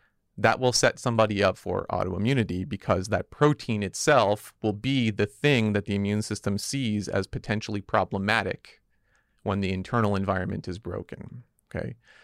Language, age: English, 40-59